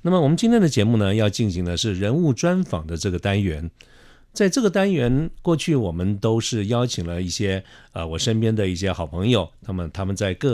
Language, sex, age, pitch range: Chinese, male, 50-69, 95-125 Hz